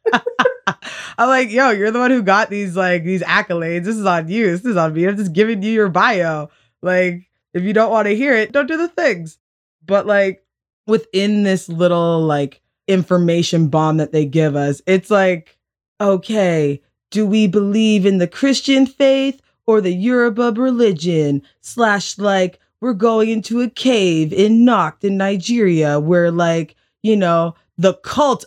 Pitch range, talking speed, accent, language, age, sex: 165-210 Hz, 170 wpm, American, English, 20-39, female